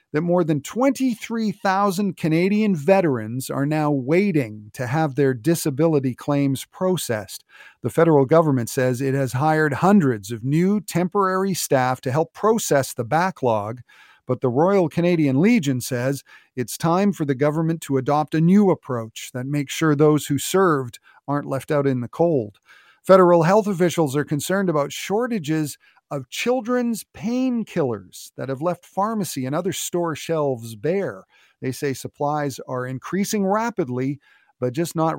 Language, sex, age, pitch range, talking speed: English, male, 40-59, 135-185 Hz, 150 wpm